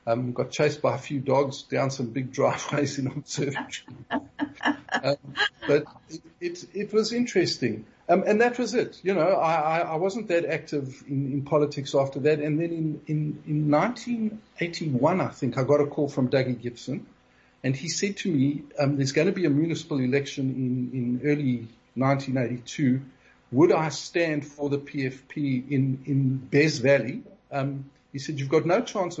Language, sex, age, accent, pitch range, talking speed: English, male, 50-69, South African, 125-150 Hz, 175 wpm